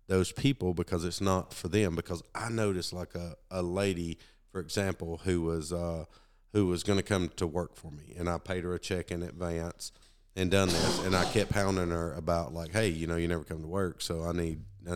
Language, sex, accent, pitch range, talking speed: English, male, American, 85-100 Hz, 235 wpm